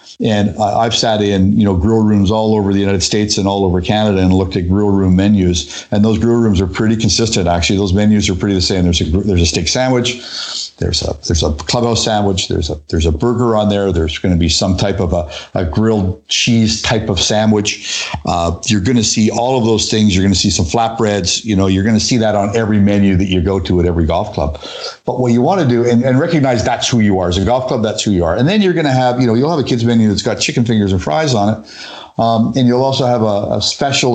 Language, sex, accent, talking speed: English, male, American, 270 wpm